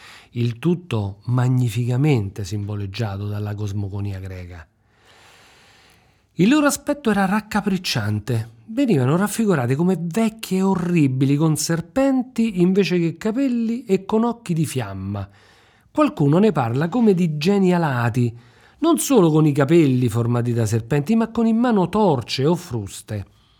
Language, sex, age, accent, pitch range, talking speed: Italian, male, 40-59, native, 115-190 Hz, 125 wpm